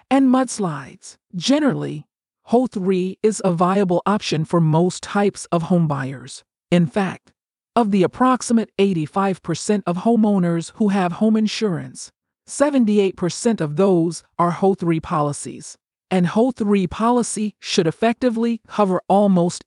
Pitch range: 170-230 Hz